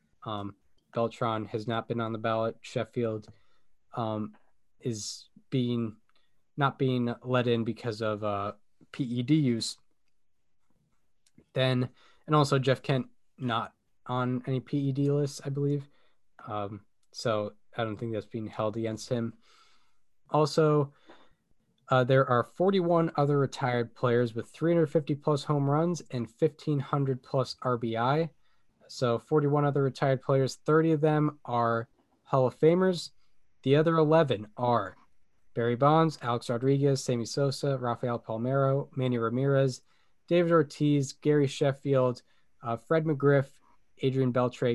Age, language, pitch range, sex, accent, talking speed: 10-29, English, 115-140 Hz, male, American, 125 wpm